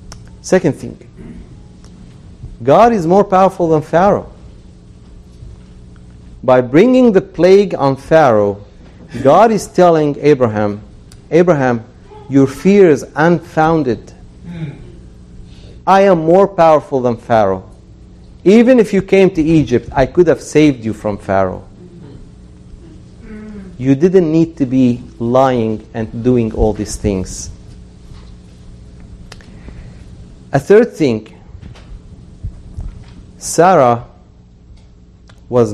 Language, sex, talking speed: English, male, 95 wpm